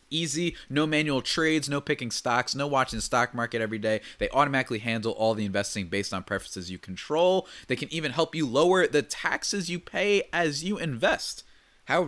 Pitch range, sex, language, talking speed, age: 105-145 Hz, male, English, 195 wpm, 20-39